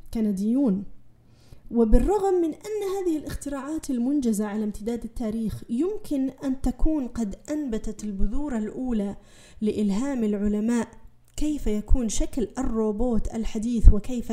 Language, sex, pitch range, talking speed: Arabic, female, 210-275 Hz, 105 wpm